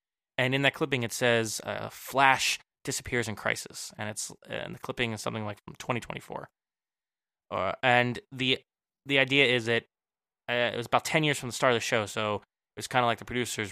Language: English